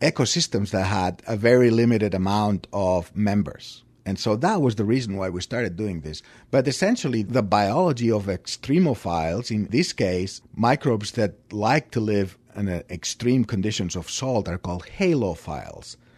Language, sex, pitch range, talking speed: English, male, 95-120 Hz, 160 wpm